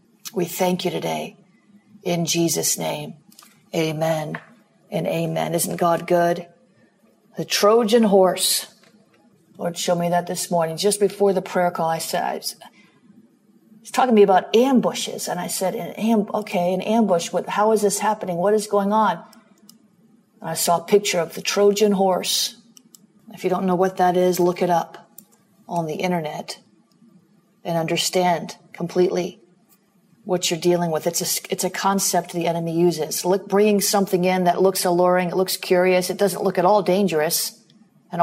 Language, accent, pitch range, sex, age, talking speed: English, American, 175-205 Hz, female, 50-69, 160 wpm